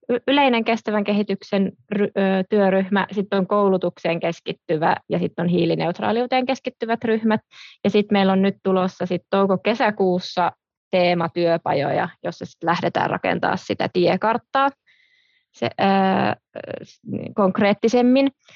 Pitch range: 180-215 Hz